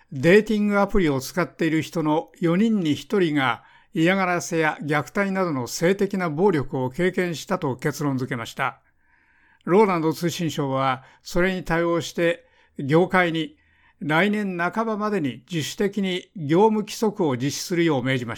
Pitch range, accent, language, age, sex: 145-195 Hz, native, Japanese, 60-79, male